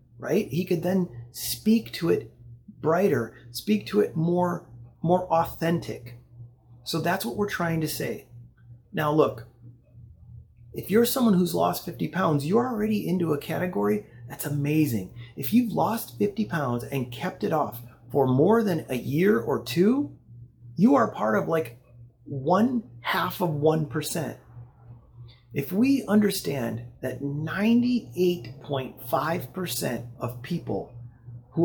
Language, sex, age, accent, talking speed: English, male, 30-49, American, 135 wpm